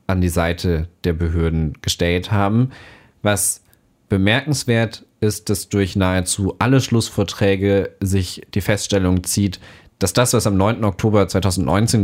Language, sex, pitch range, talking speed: German, male, 90-105 Hz, 130 wpm